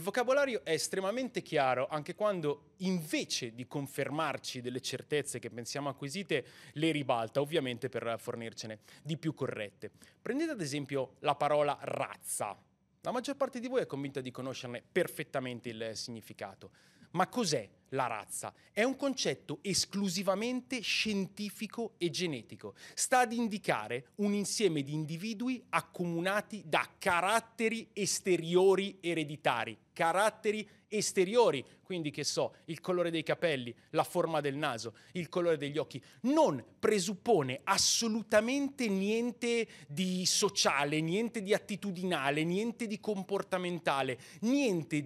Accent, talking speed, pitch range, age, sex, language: native, 125 wpm, 140-210 Hz, 30-49, male, Italian